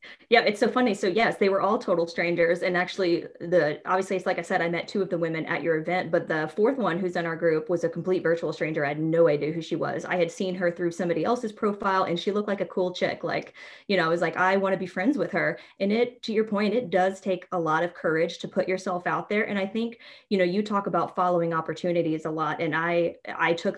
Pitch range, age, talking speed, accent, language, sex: 170-200 Hz, 20-39, 275 wpm, American, English, female